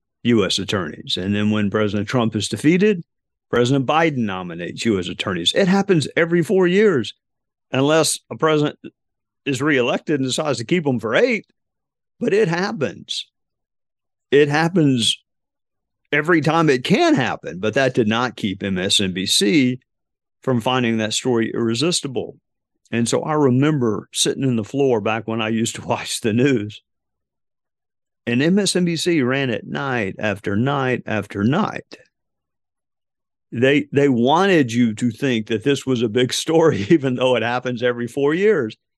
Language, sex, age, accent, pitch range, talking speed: English, male, 50-69, American, 115-150 Hz, 150 wpm